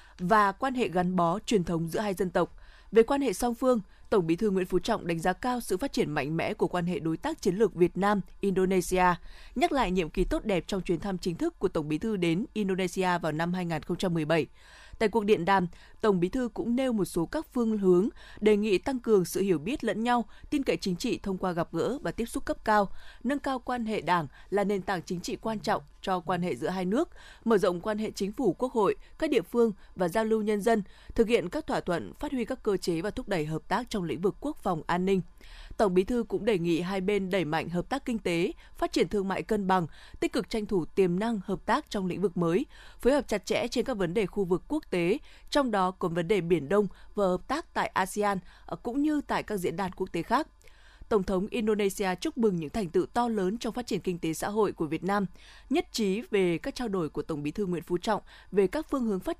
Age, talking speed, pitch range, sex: 20-39, 260 wpm, 180-235 Hz, female